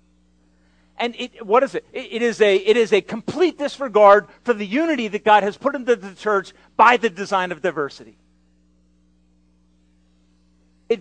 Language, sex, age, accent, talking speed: English, male, 40-59, American, 160 wpm